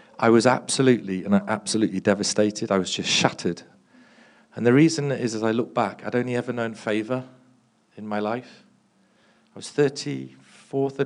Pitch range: 95-120 Hz